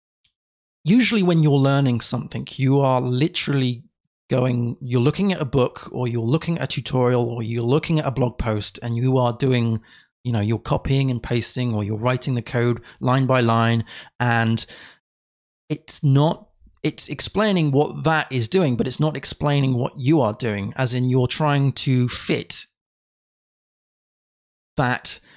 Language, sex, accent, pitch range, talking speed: English, male, British, 120-150 Hz, 165 wpm